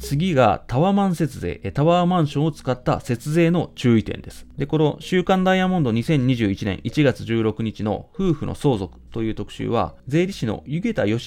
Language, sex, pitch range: Japanese, male, 105-170 Hz